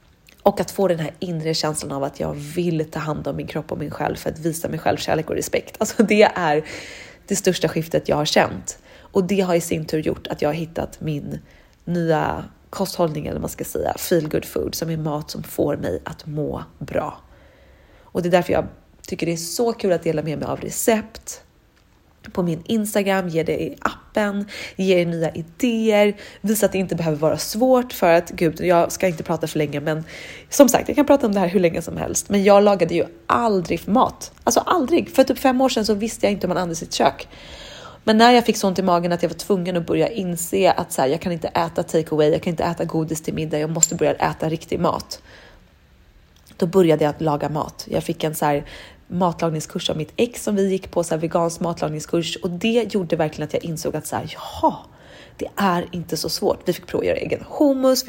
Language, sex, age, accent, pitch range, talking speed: Swedish, female, 30-49, native, 160-205 Hz, 230 wpm